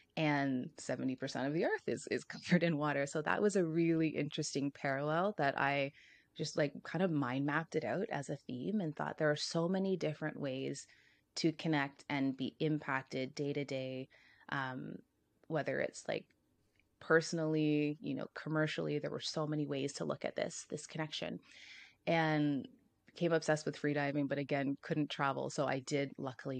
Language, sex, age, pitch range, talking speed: English, female, 20-39, 140-160 Hz, 175 wpm